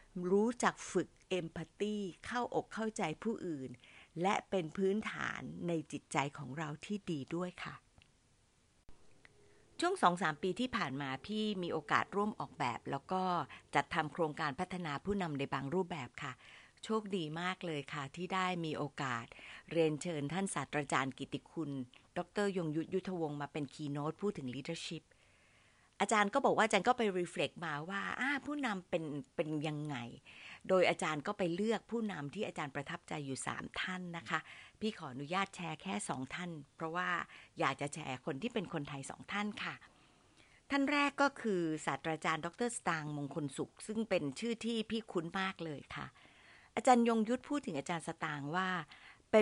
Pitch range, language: 150-200 Hz, Thai